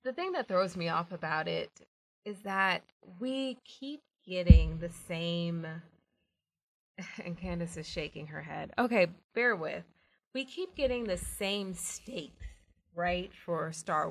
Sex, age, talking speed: female, 20-39, 140 wpm